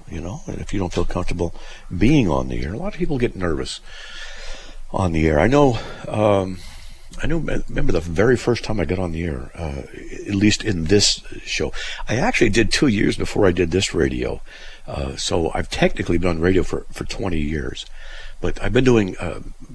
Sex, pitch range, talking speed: male, 80-100 Hz, 205 wpm